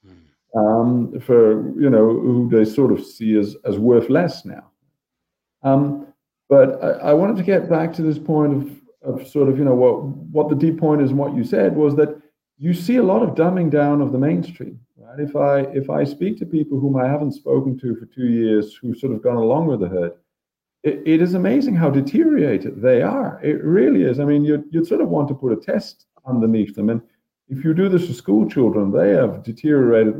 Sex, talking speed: male, 225 wpm